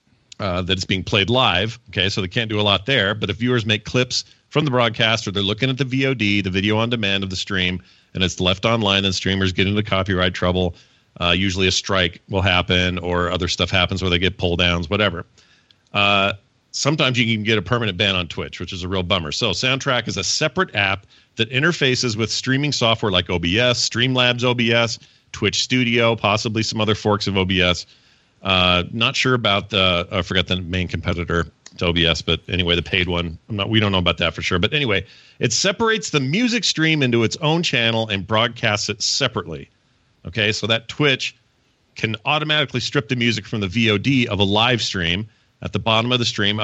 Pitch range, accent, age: 95-125 Hz, American, 40-59